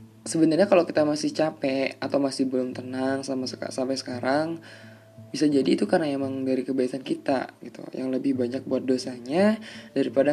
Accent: native